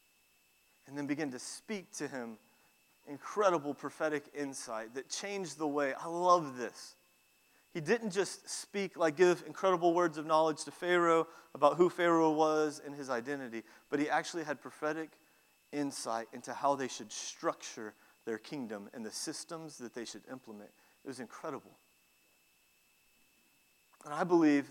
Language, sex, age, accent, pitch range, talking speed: English, male, 30-49, American, 140-165 Hz, 150 wpm